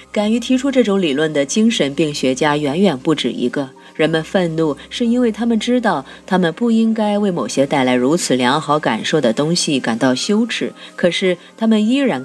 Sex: female